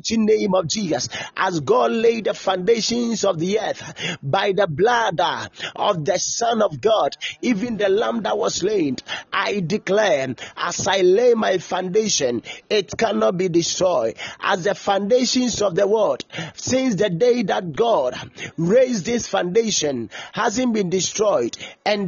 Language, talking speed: English, 145 wpm